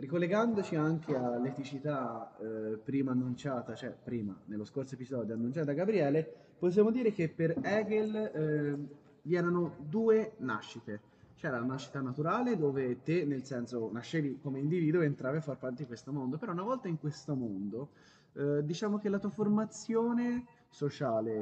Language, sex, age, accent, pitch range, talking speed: Italian, male, 20-39, native, 130-175 Hz, 155 wpm